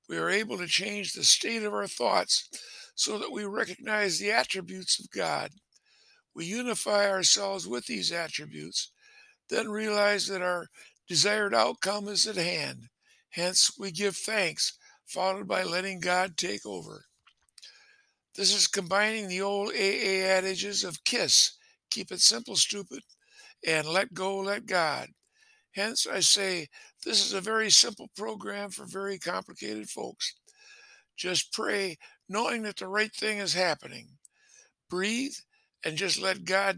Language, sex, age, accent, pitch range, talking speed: English, male, 60-79, American, 185-215 Hz, 145 wpm